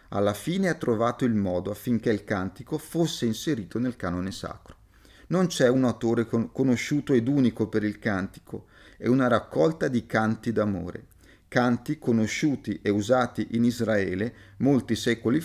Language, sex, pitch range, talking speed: Italian, male, 105-140 Hz, 150 wpm